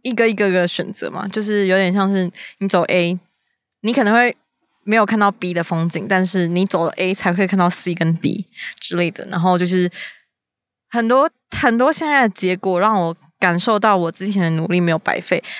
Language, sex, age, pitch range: Chinese, female, 20-39, 180-230 Hz